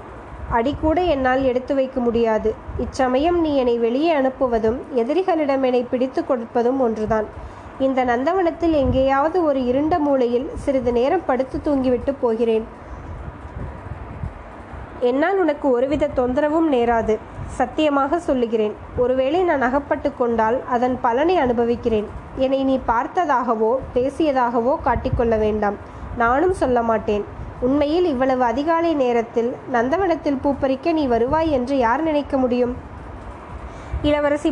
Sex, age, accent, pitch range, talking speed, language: female, 20-39, native, 240-295 Hz, 110 wpm, Tamil